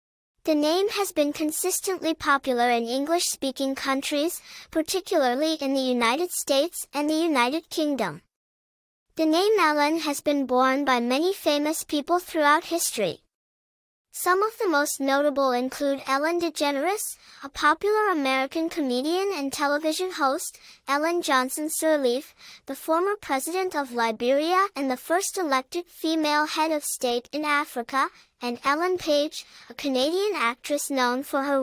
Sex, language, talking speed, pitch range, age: male, English, 135 wpm, 270-335 Hz, 10-29